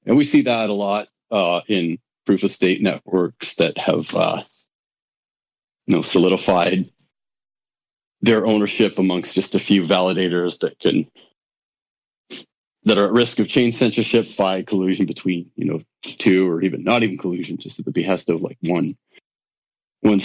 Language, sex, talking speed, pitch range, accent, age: English, male, 155 wpm, 95-115 Hz, American, 40-59